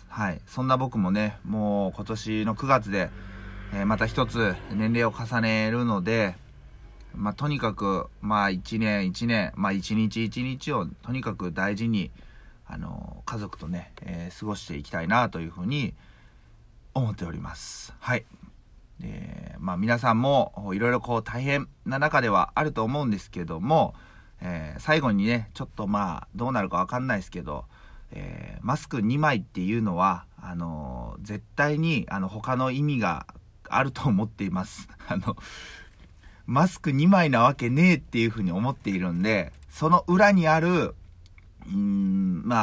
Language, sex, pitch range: Japanese, male, 100-145 Hz